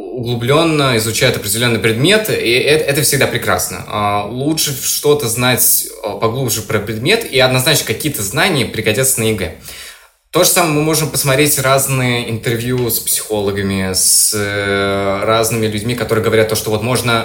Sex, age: male, 20-39